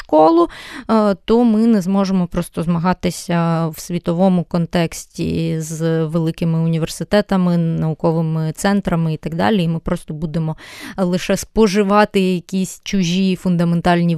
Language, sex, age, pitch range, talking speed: Ukrainian, female, 20-39, 170-210 Hz, 115 wpm